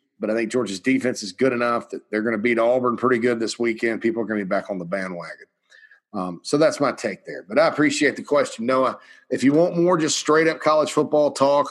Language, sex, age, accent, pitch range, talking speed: English, male, 40-59, American, 120-165 Hz, 250 wpm